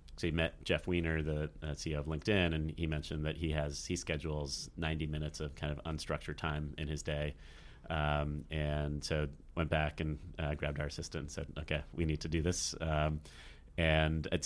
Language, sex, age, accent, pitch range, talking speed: English, male, 30-49, American, 75-85 Hz, 200 wpm